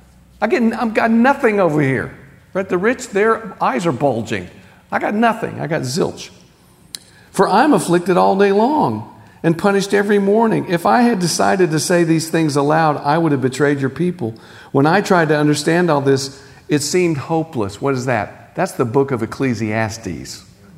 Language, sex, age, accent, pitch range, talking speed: English, male, 50-69, American, 110-155 Hz, 180 wpm